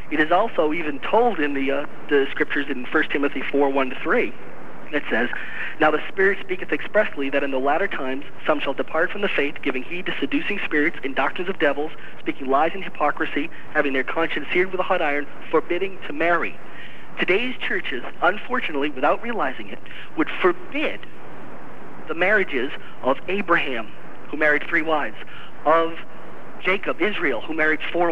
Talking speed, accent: 170 wpm, American